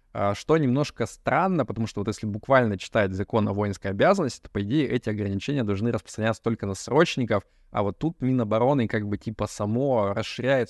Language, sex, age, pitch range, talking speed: Russian, male, 20-39, 105-125 Hz, 180 wpm